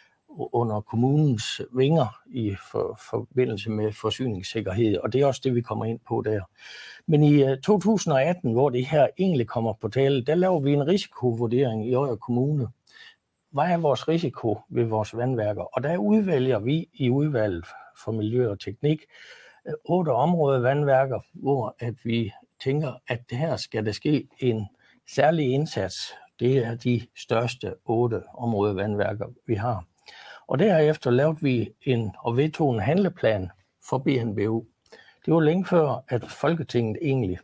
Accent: native